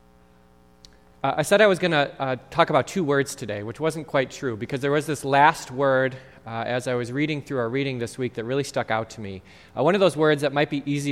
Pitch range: 130-195 Hz